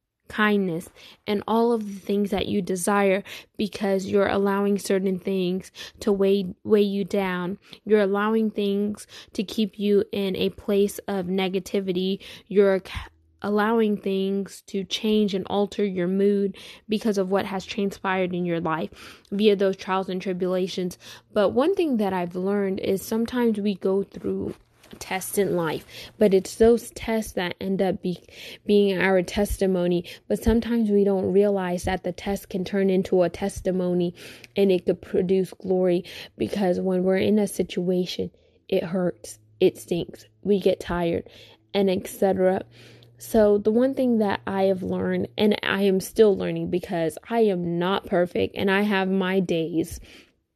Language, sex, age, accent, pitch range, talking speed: English, female, 10-29, American, 185-205 Hz, 160 wpm